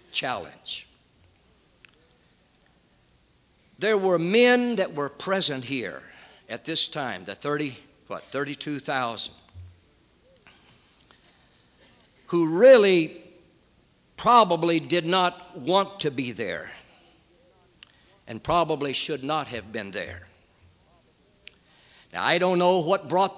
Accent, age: American, 60-79